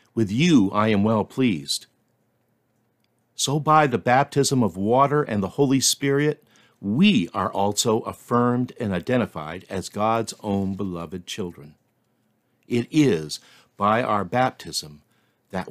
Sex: male